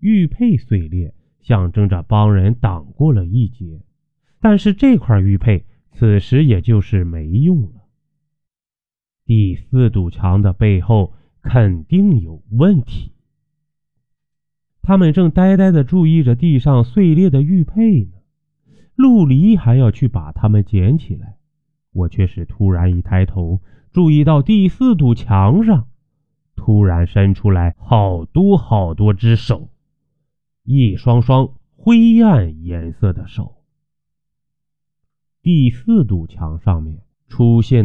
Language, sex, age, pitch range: Chinese, male, 30-49, 100-150 Hz